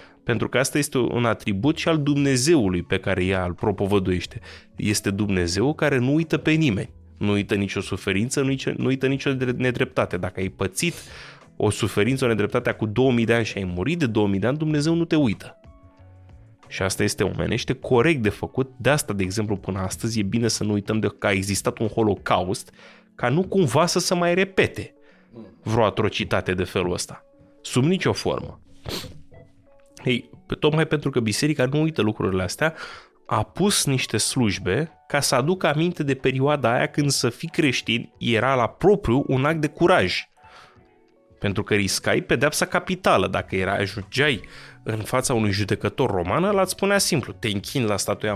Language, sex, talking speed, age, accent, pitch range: Romanian, male, 175 wpm, 20-39, native, 100-145 Hz